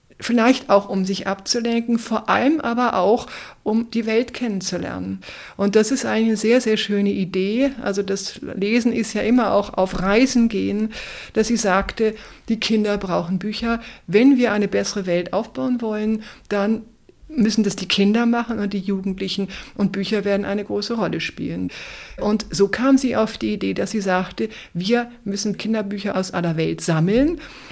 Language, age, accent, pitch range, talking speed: German, 50-69, German, 195-230 Hz, 170 wpm